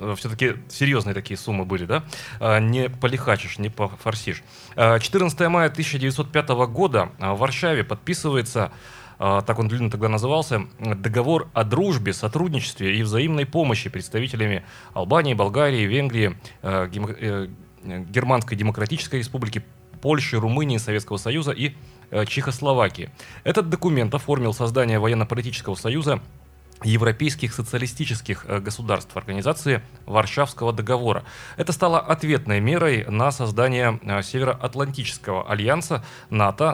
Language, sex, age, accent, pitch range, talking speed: Russian, male, 30-49, native, 105-140 Hz, 105 wpm